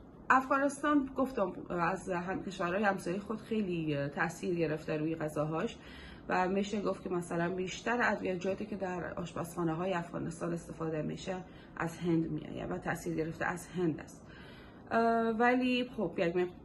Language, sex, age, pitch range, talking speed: Persian, female, 30-49, 165-190 Hz, 130 wpm